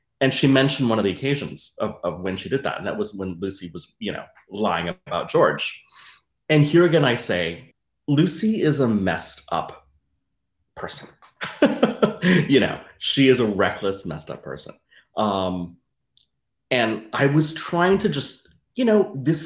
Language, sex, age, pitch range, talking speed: English, male, 30-49, 95-145 Hz, 165 wpm